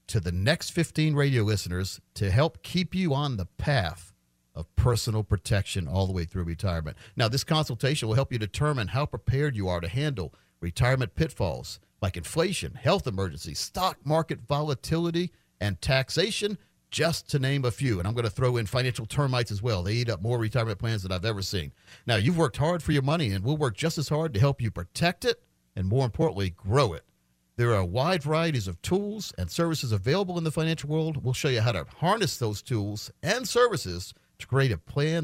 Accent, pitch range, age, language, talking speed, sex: American, 100-155 Hz, 50-69, English, 205 wpm, male